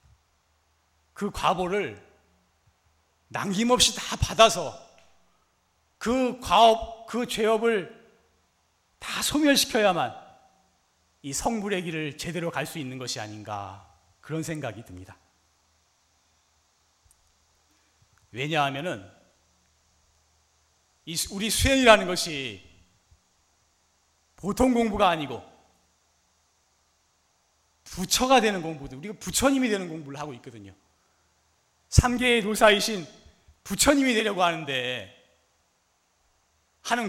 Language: Korean